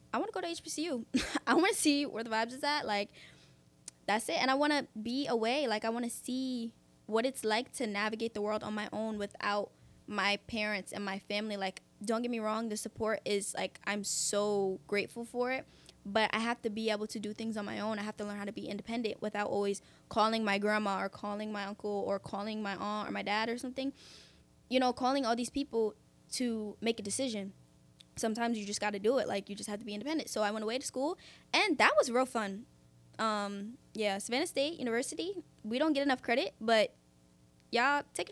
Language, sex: English, female